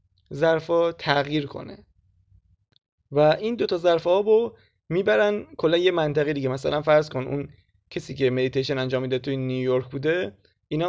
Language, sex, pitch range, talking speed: Persian, male, 130-165 Hz, 150 wpm